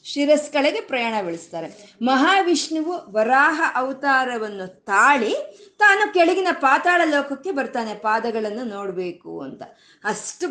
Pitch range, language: 230-305 Hz, Kannada